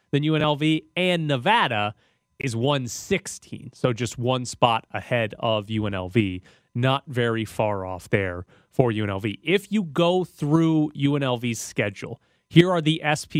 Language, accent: English, American